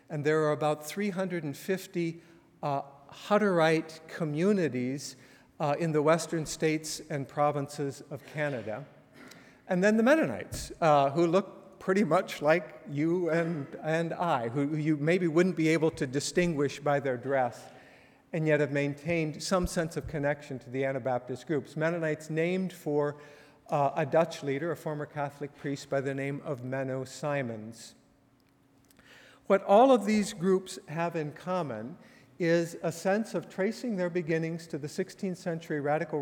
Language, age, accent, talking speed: English, 50-69, American, 150 wpm